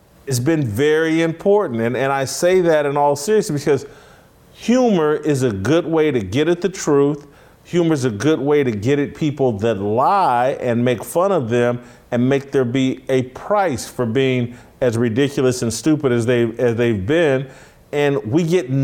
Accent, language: American, English